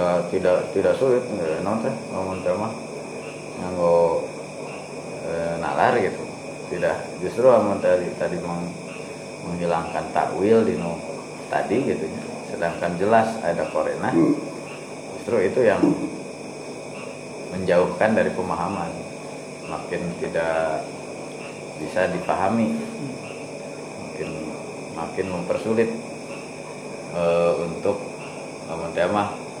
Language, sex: Indonesian, male